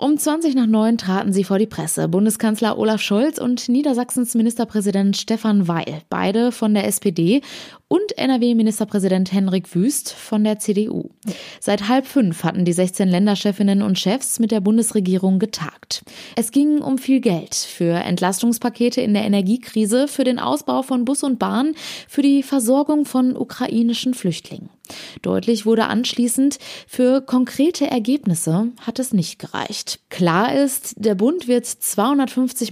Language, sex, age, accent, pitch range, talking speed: German, female, 20-39, German, 195-250 Hz, 145 wpm